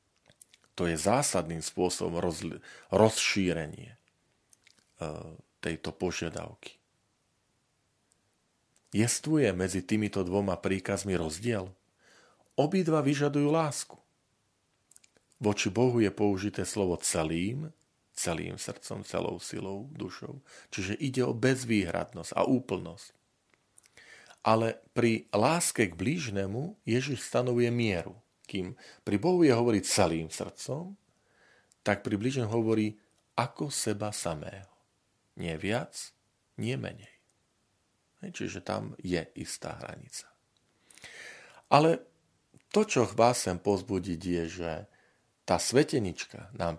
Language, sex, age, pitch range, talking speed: Slovak, male, 40-59, 95-120 Hz, 95 wpm